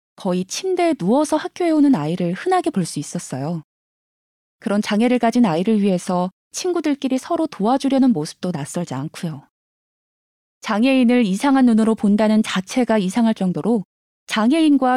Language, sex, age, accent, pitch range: Korean, female, 20-39, native, 200-275 Hz